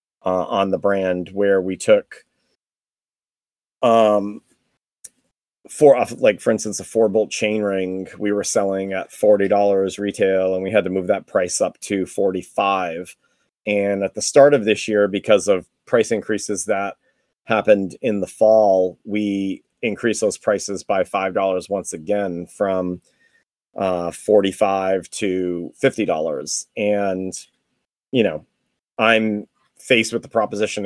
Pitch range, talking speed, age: 95-105 Hz, 135 wpm, 30-49